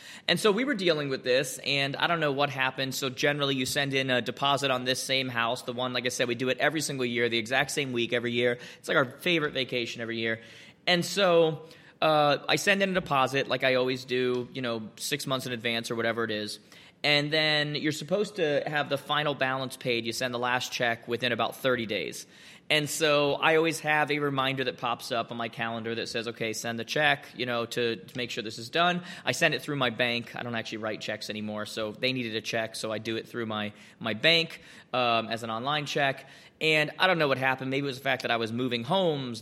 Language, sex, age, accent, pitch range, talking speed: English, male, 20-39, American, 120-145 Hz, 250 wpm